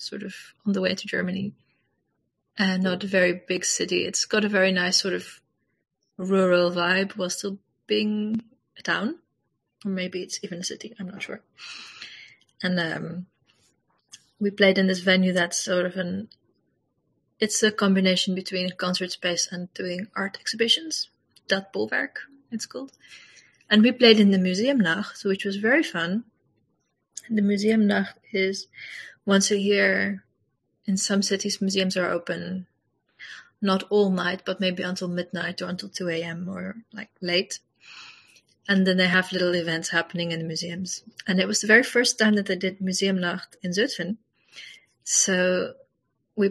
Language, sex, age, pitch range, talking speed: English, female, 20-39, 180-205 Hz, 165 wpm